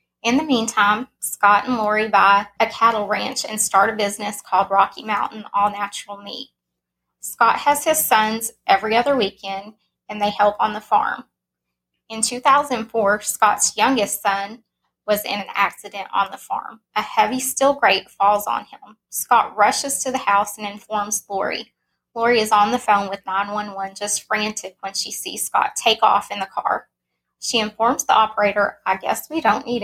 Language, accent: English, American